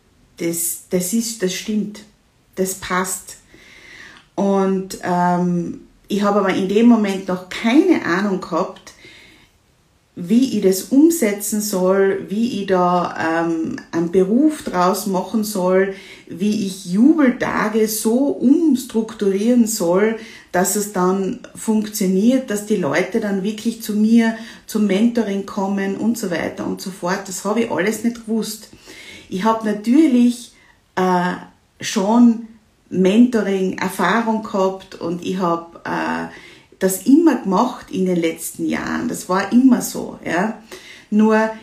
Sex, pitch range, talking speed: female, 185-225 Hz, 125 wpm